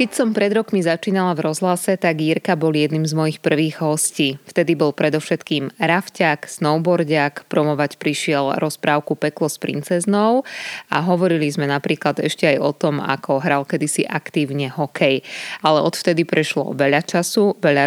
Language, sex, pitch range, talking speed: Slovak, female, 150-180 Hz, 150 wpm